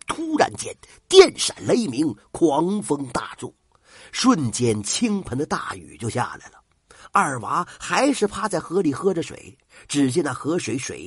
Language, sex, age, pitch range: Chinese, male, 50-69, 180-275 Hz